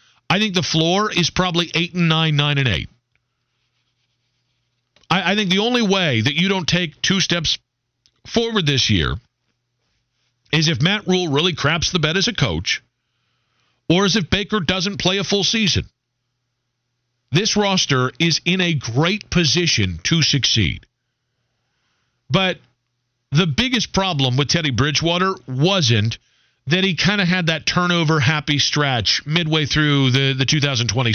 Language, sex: English, male